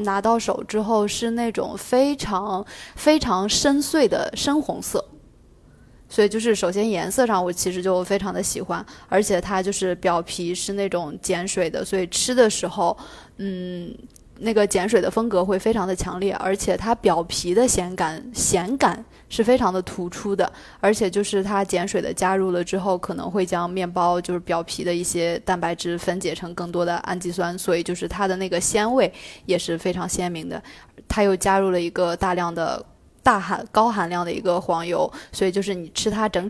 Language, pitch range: Chinese, 180-210 Hz